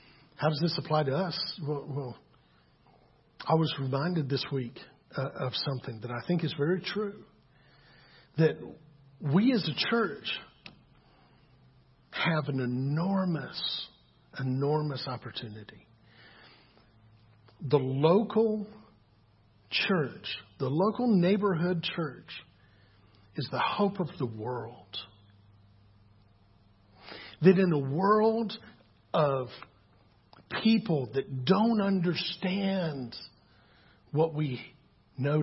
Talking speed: 95 wpm